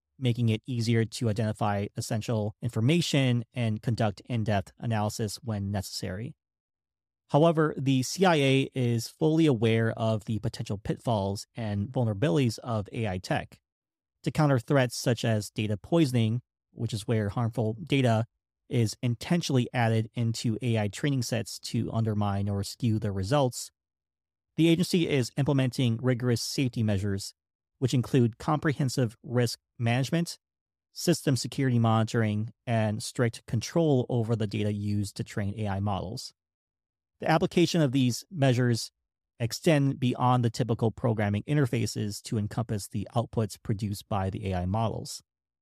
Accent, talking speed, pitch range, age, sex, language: American, 130 wpm, 105-130 Hz, 30-49, male, English